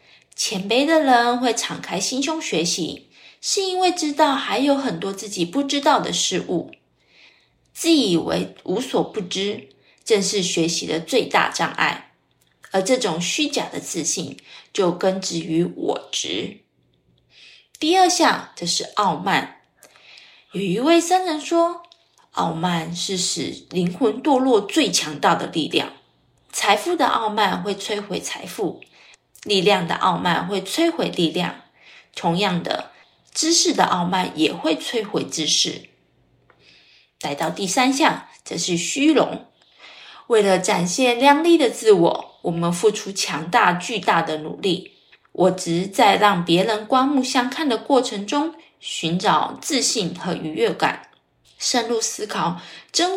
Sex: female